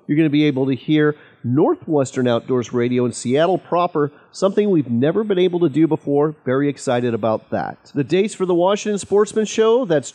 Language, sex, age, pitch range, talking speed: English, male, 40-59, 130-185 Hz, 195 wpm